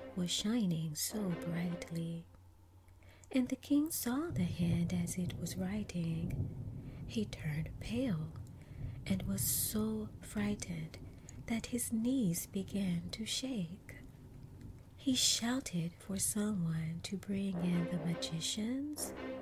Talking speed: 110 wpm